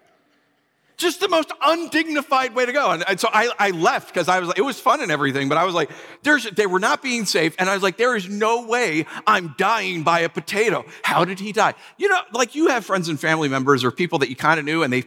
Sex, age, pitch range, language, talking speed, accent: male, 50-69, 160-245 Hz, English, 265 wpm, American